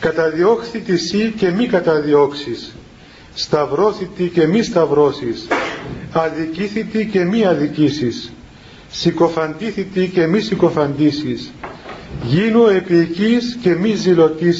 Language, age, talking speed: Greek, 40-59, 90 wpm